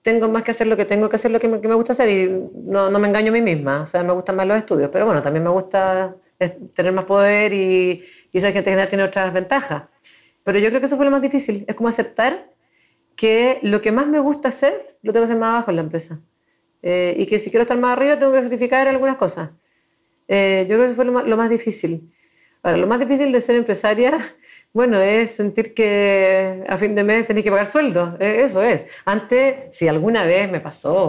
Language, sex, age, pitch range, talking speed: Spanish, female, 40-59, 185-230 Hz, 245 wpm